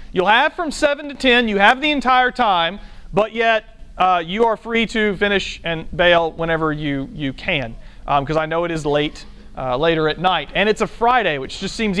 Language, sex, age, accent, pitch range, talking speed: English, male, 40-59, American, 175-250 Hz, 215 wpm